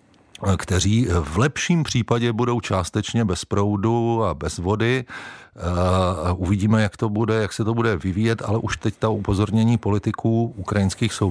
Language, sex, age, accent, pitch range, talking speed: Czech, male, 40-59, native, 90-110 Hz, 150 wpm